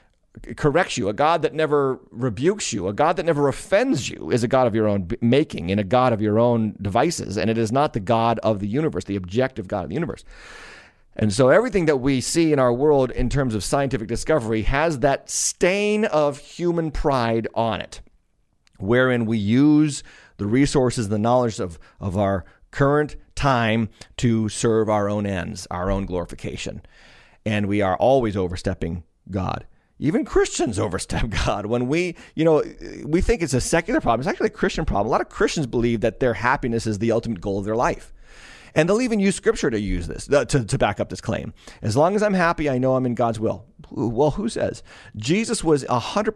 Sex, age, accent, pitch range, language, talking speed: male, 40-59, American, 110-150 Hz, English, 205 wpm